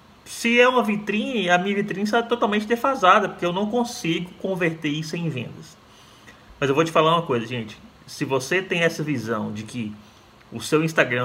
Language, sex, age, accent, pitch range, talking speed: Portuguese, male, 20-39, Brazilian, 115-160 Hz, 190 wpm